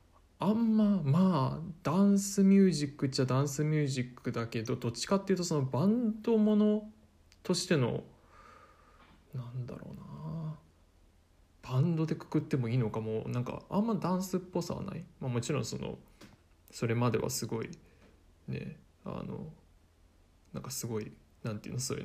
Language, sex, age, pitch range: Japanese, male, 20-39, 110-155 Hz